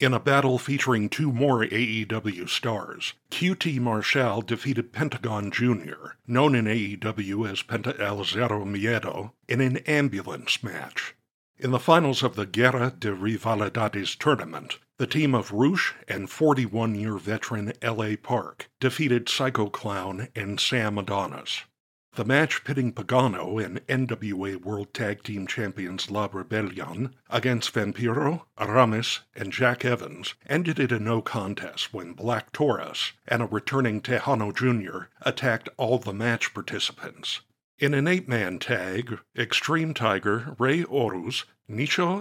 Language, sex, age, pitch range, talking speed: English, male, 60-79, 105-130 Hz, 135 wpm